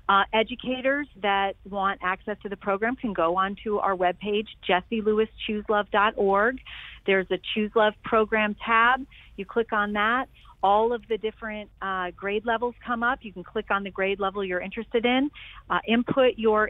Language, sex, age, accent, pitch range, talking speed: English, female, 40-59, American, 180-220 Hz, 165 wpm